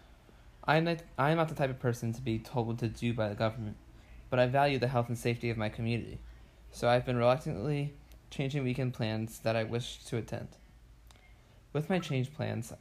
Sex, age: male, 20-39